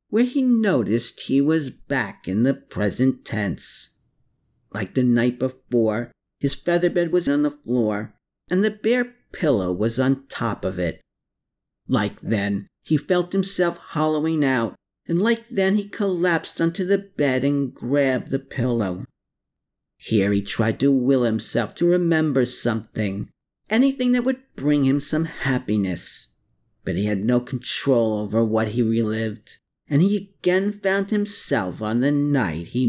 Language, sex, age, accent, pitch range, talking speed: English, male, 50-69, American, 115-180 Hz, 150 wpm